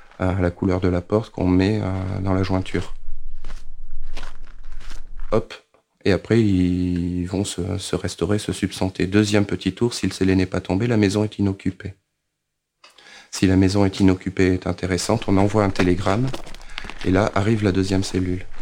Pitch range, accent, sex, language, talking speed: 90-100 Hz, French, male, French, 165 wpm